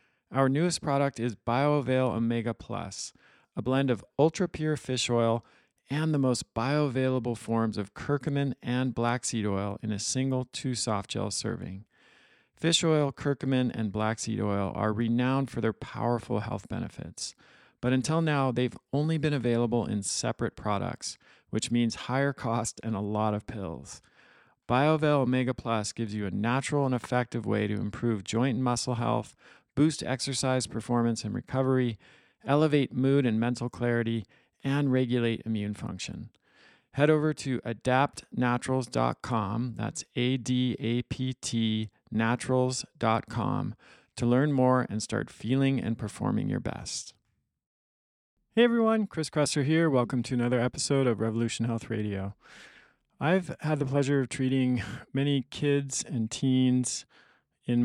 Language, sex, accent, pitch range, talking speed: English, male, American, 115-135 Hz, 140 wpm